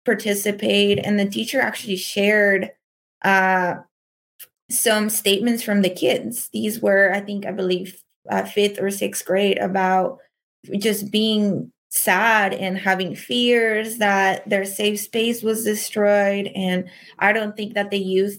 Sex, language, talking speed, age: female, English, 140 wpm, 20-39